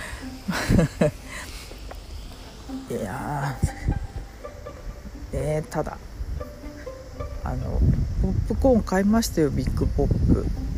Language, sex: Japanese, female